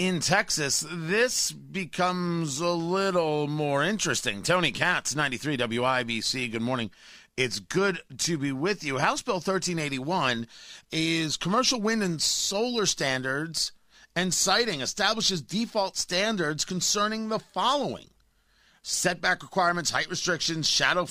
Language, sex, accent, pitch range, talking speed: English, male, American, 130-185 Hz, 115 wpm